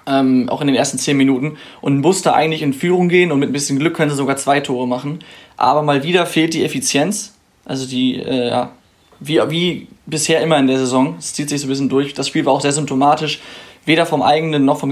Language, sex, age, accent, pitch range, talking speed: German, male, 20-39, German, 135-155 Hz, 235 wpm